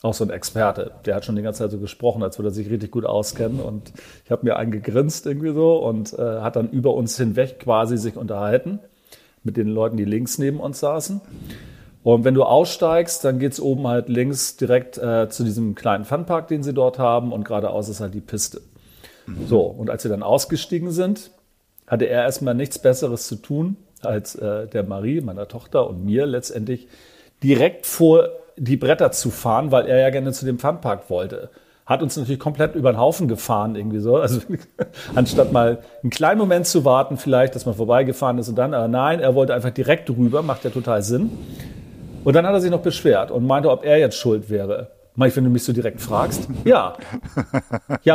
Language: German